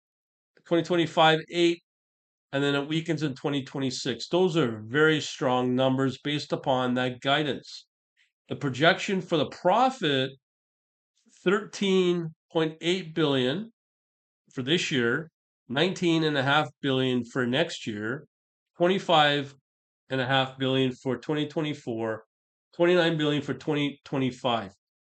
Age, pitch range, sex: 40-59, 130-165 Hz, male